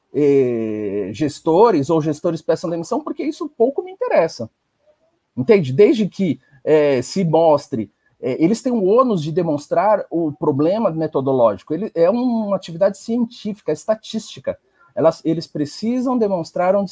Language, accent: Portuguese, Brazilian